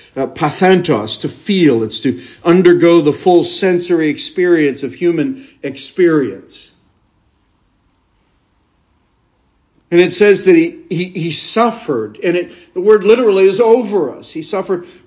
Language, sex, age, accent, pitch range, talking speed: English, male, 60-79, American, 135-200 Hz, 125 wpm